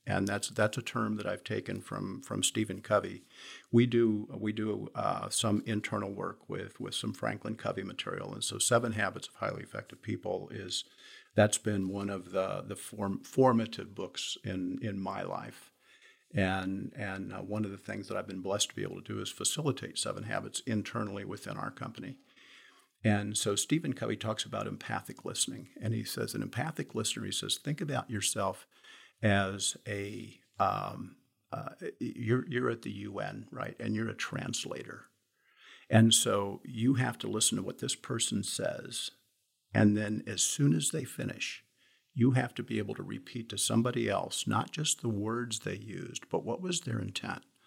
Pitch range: 100-120 Hz